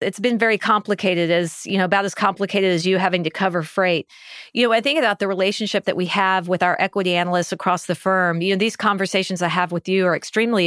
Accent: American